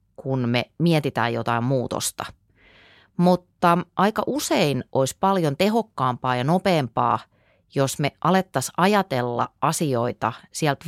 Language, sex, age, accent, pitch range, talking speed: Finnish, female, 30-49, native, 105-170 Hz, 105 wpm